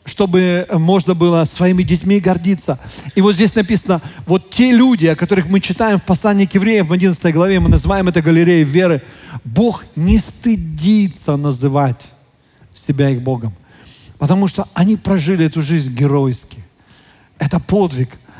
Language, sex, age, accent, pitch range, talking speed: Russian, male, 40-59, native, 150-195 Hz, 145 wpm